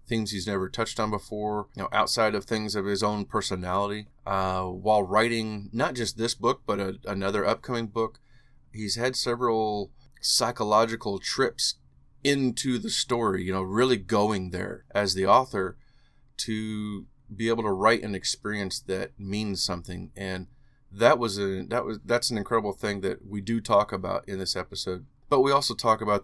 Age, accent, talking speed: 30-49, American, 170 wpm